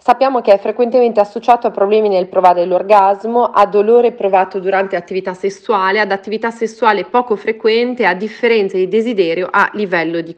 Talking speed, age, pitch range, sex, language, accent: 160 wpm, 30-49, 175-210 Hz, female, Italian, native